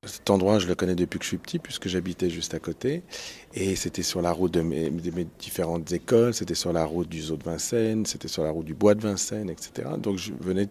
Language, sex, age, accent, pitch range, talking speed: French, male, 40-59, French, 85-100 Hz, 250 wpm